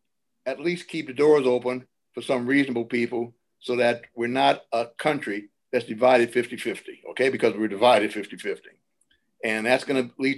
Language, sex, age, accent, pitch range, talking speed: English, male, 60-79, American, 120-155 Hz, 180 wpm